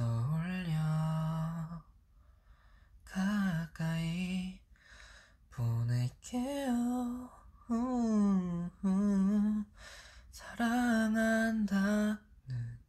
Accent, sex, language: native, male, Korean